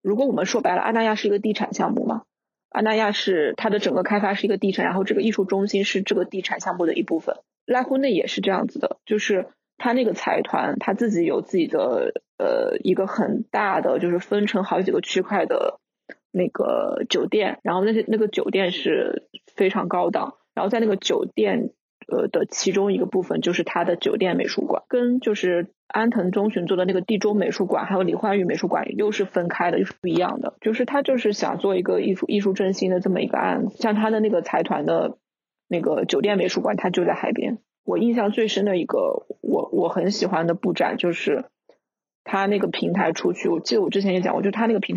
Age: 20-39